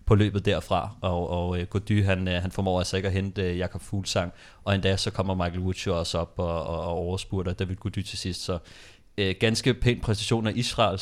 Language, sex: Danish, male